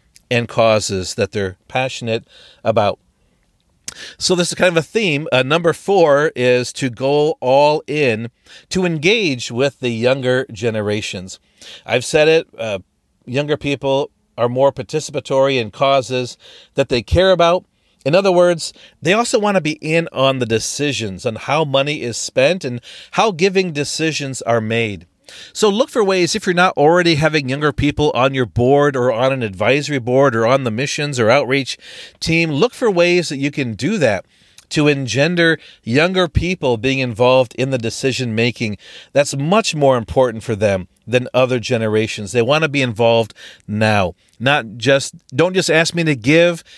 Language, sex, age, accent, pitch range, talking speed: English, male, 40-59, American, 115-155 Hz, 170 wpm